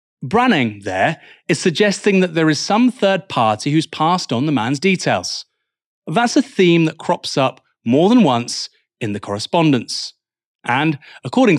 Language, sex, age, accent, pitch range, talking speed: English, male, 30-49, British, 120-155 Hz, 155 wpm